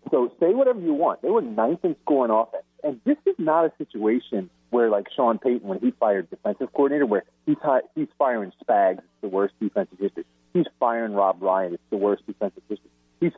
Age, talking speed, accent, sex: 40-59, 215 wpm, American, male